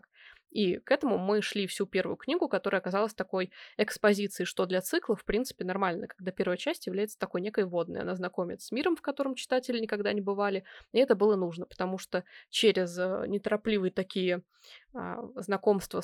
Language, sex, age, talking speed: Russian, female, 20-39, 170 wpm